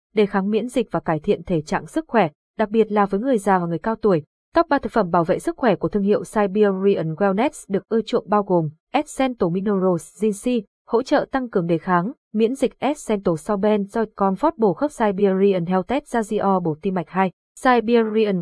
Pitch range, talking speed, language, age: 190-235 Hz, 200 wpm, Vietnamese, 20-39